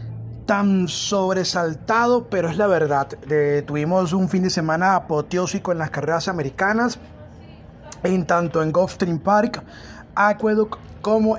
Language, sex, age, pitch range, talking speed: Spanish, male, 30-49, 165-205 Hz, 125 wpm